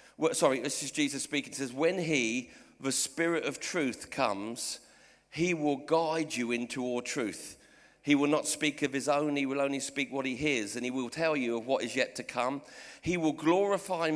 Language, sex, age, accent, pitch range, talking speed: English, male, 50-69, British, 125-165 Hz, 210 wpm